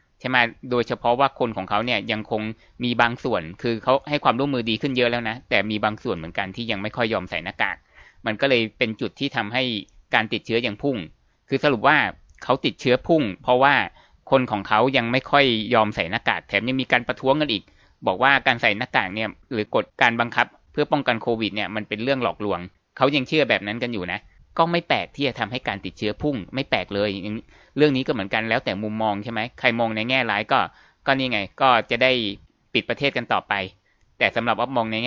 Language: Thai